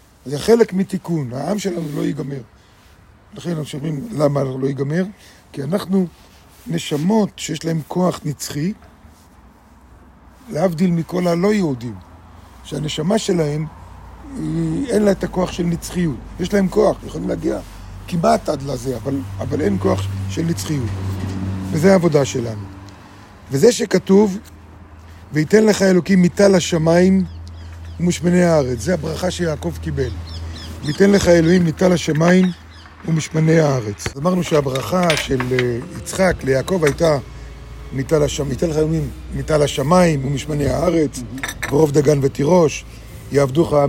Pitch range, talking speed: 105-175 Hz, 120 wpm